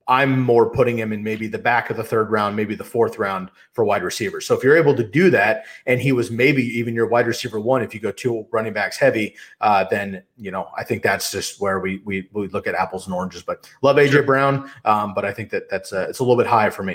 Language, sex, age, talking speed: English, male, 30-49, 275 wpm